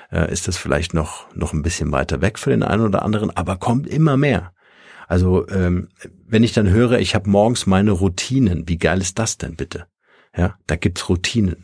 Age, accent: 50-69, German